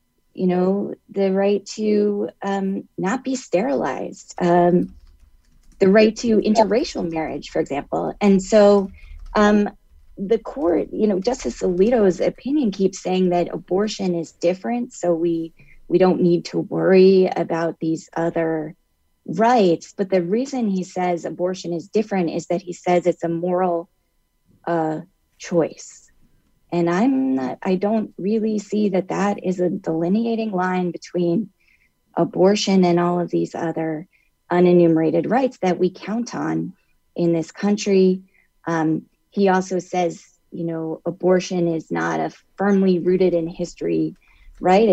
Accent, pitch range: American, 170-210 Hz